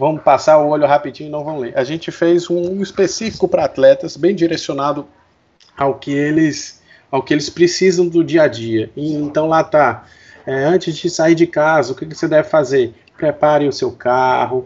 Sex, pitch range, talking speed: male, 130-165 Hz, 200 wpm